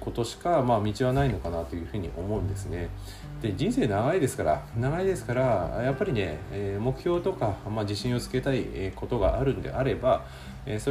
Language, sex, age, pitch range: Japanese, male, 40-59, 95-135 Hz